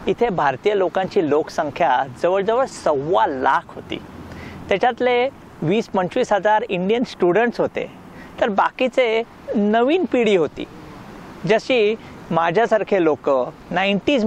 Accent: native